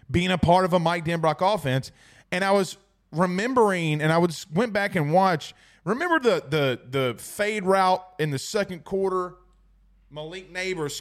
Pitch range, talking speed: 135-200 Hz, 170 wpm